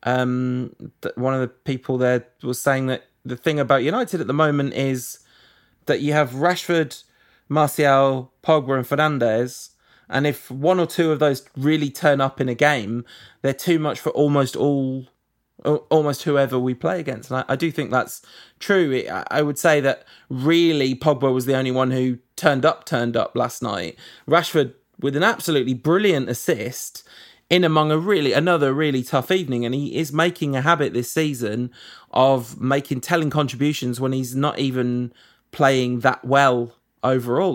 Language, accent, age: English, British, 20-39